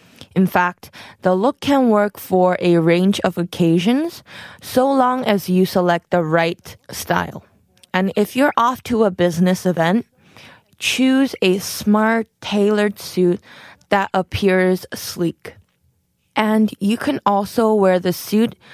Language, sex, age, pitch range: Korean, female, 20-39, 175-220 Hz